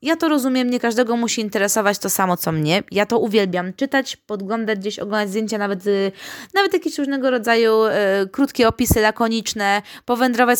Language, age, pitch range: Polish, 20-39, 205-255 Hz